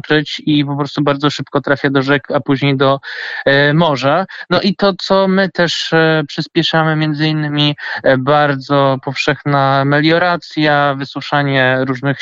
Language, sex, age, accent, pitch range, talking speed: Polish, male, 20-39, native, 140-160 Hz, 130 wpm